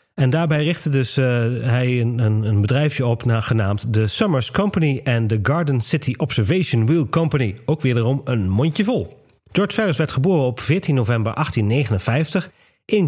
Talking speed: 165 wpm